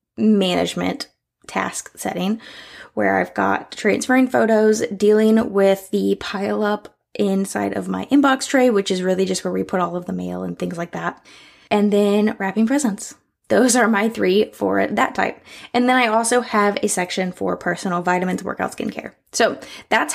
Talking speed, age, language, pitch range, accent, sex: 175 wpm, 20-39, English, 195-245 Hz, American, female